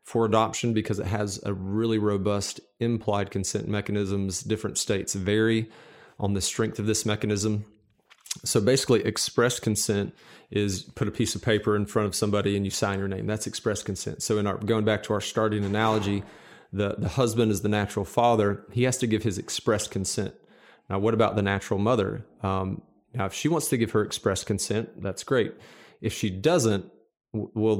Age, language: 30-49, English